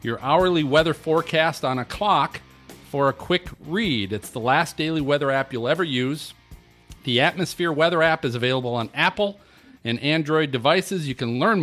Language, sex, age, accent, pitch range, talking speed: English, male, 40-59, American, 130-160 Hz, 175 wpm